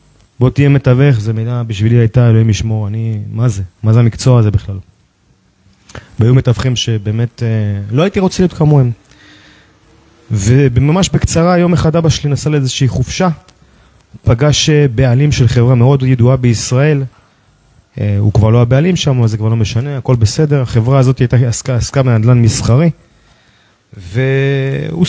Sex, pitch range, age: male, 110-150 Hz, 30-49